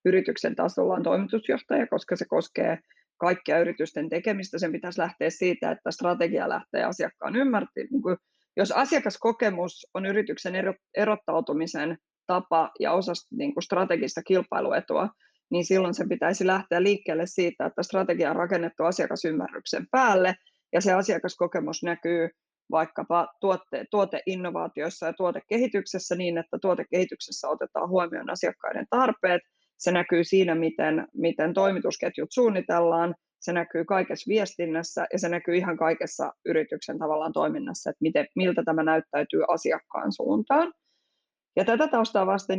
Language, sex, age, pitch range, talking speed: Finnish, female, 20-39, 170-195 Hz, 125 wpm